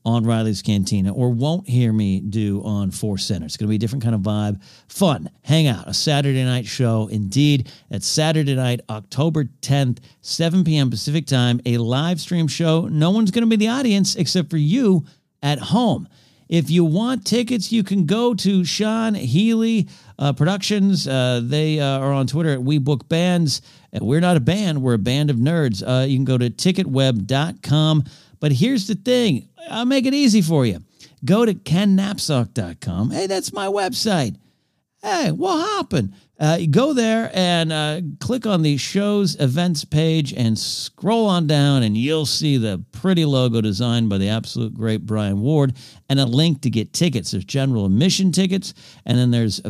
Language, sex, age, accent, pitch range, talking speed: English, male, 50-69, American, 120-180 Hz, 180 wpm